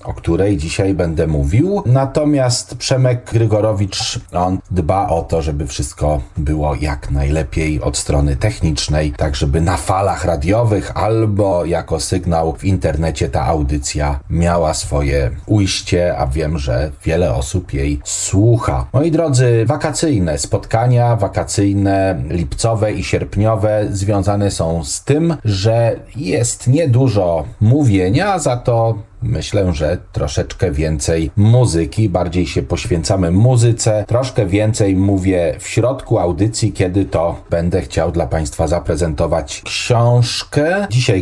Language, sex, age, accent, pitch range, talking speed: Polish, male, 40-59, native, 85-115 Hz, 120 wpm